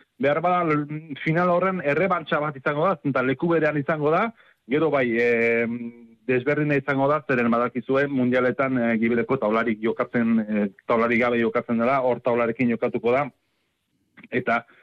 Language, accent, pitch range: Spanish, Spanish, 115-140 Hz